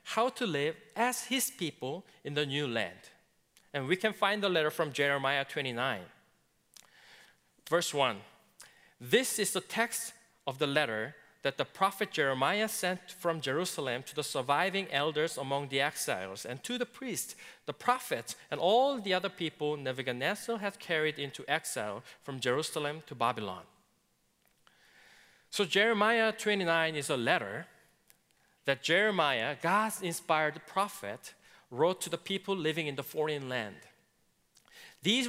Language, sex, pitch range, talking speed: English, male, 145-205 Hz, 140 wpm